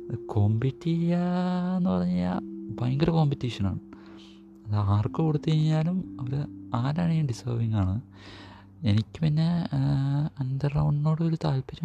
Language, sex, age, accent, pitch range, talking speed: Malayalam, male, 30-49, native, 105-140 Hz, 95 wpm